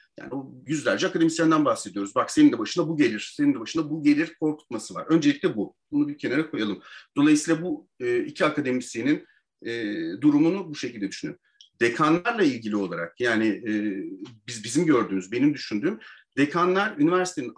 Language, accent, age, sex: Turkish, native, 40-59, male